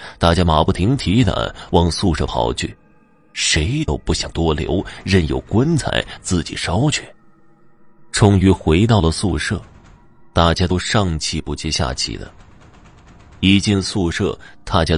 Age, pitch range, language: 30-49, 80-115 Hz, Chinese